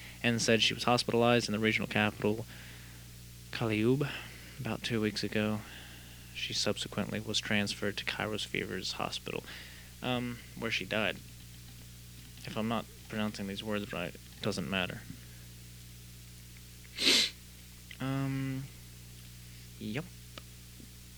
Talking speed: 110 wpm